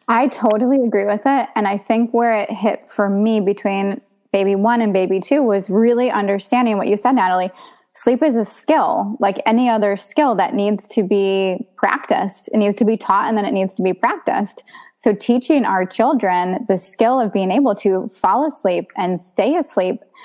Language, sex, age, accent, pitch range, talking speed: English, female, 20-39, American, 195-235 Hz, 195 wpm